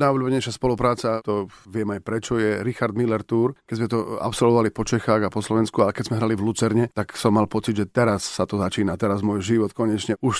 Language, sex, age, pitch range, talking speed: Slovak, male, 40-59, 105-120 Hz, 230 wpm